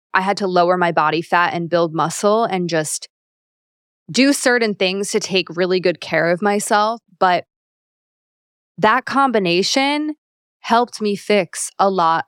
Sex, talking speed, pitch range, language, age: female, 145 wpm, 170-200 Hz, English, 20-39